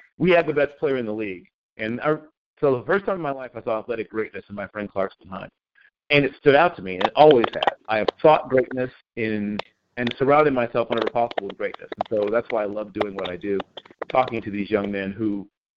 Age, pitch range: 40-59, 110-160 Hz